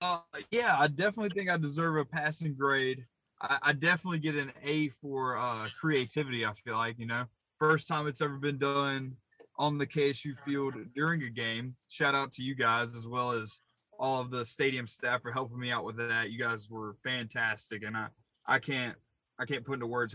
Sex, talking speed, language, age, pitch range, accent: male, 205 wpm, English, 20-39, 125-165 Hz, American